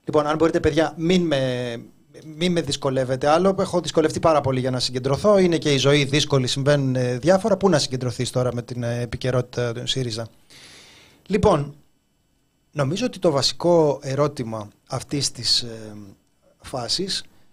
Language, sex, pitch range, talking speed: Greek, male, 120-165 Hz, 145 wpm